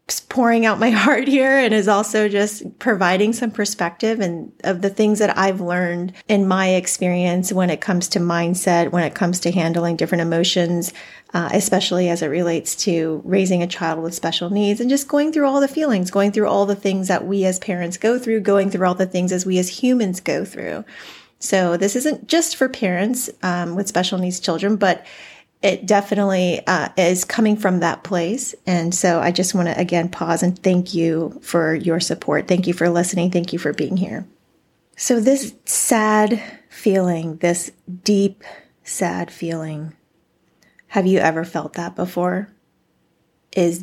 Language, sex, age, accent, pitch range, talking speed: English, female, 30-49, American, 175-205 Hz, 180 wpm